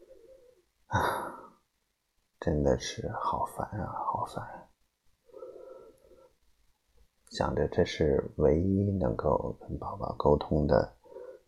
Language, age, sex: Chinese, 30-49, male